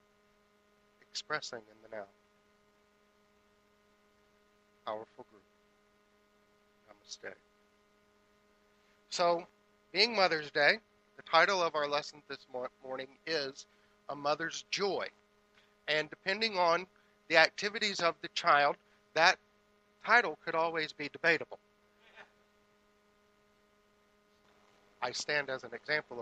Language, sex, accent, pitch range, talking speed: English, male, American, 165-210 Hz, 95 wpm